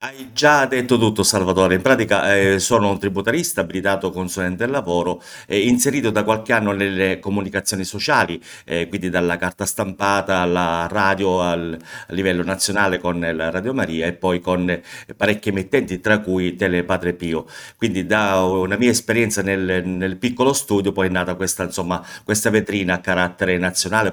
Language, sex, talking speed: Italian, male, 170 wpm